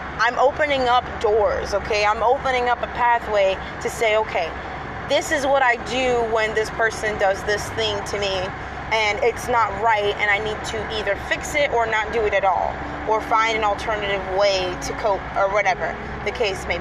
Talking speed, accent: 195 wpm, American